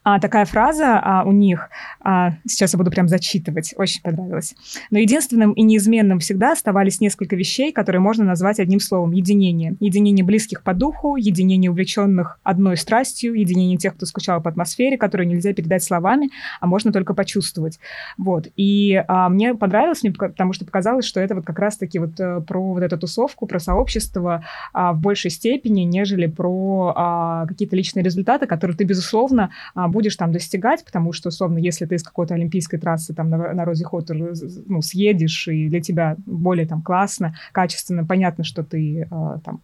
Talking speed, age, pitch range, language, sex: 175 wpm, 20-39, 175-205 Hz, Russian, female